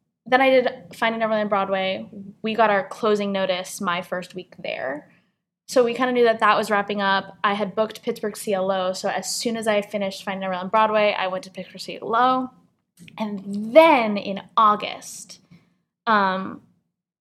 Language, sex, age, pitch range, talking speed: English, female, 10-29, 185-220 Hz, 175 wpm